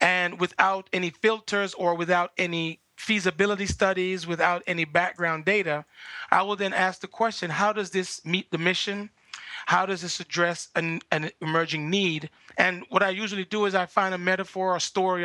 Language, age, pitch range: English, 30-49, 170-195 Hz